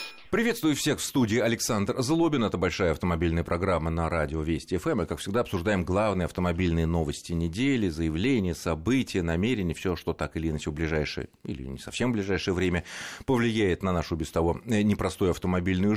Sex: male